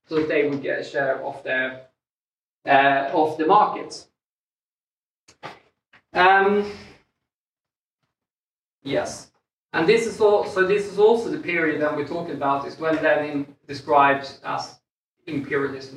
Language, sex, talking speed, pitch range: English, male, 130 wpm, 140-175 Hz